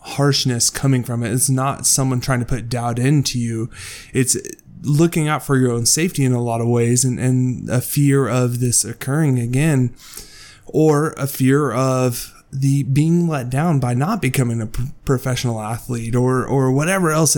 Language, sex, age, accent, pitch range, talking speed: English, male, 20-39, American, 125-145 Hz, 175 wpm